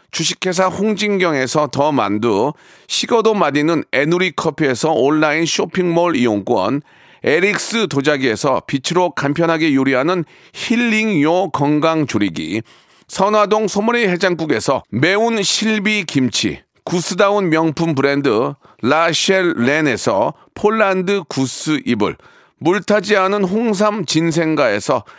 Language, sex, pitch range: Korean, male, 155-205 Hz